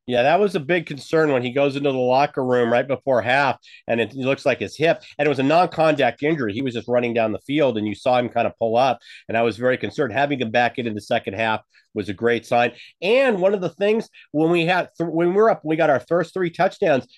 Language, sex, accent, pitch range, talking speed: English, male, American, 125-165 Hz, 275 wpm